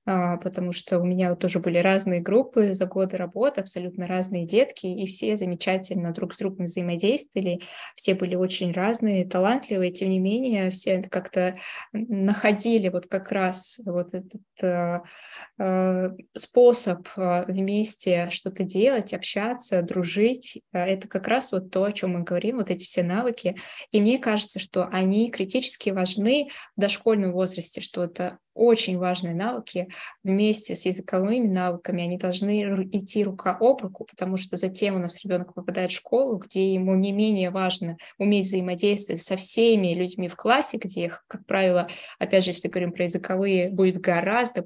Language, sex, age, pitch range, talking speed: Russian, female, 20-39, 180-215 Hz, 155 wpm